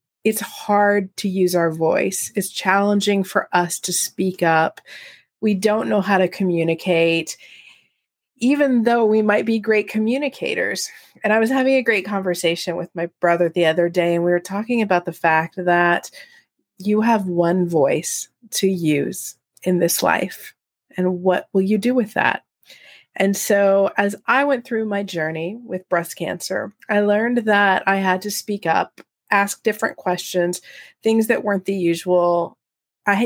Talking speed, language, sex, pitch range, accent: 165 wpm, English, female, 180-220 Hz, American